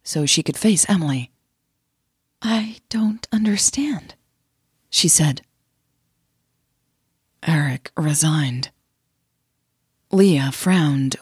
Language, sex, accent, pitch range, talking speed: English, female, American, 145-190 Hz, 75 wpm